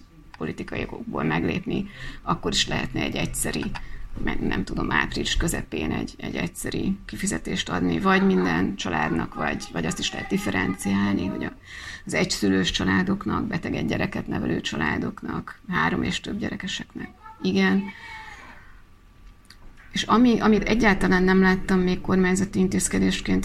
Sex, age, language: female, 30-49, Hungarian